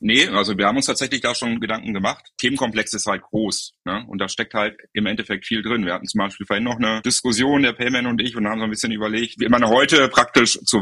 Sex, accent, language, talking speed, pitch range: male, German, German, 255 wpm, 100-115 Hz